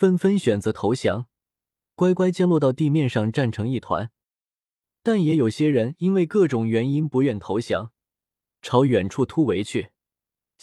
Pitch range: 115-165 Hz